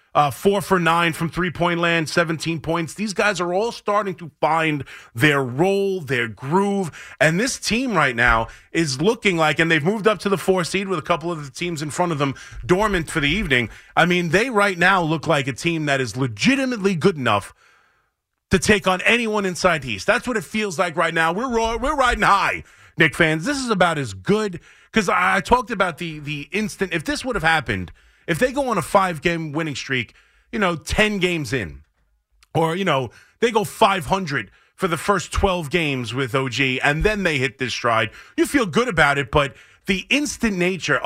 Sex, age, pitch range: male, 30-49, 145-200 Hz